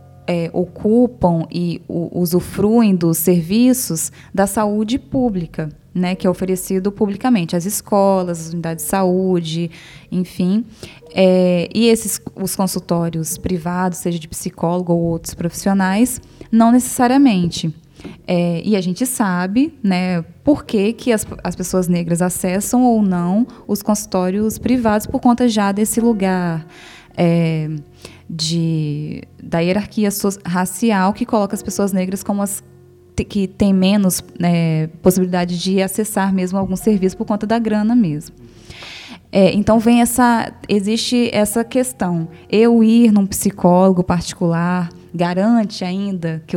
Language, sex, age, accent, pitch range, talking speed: English, female, 10-29, Brazilian, 175-220 Hz, 135 wpm